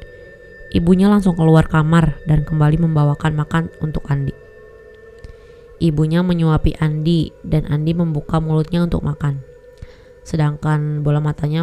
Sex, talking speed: female, 115 wpm